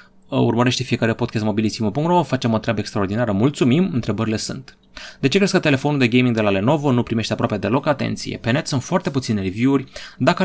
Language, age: Romanian, 30-49